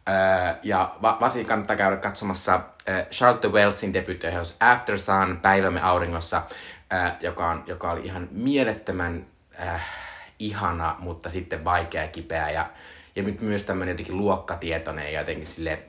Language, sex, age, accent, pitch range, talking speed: Finnish, male, 20-39, native, 85-105 Hz, 145 wpm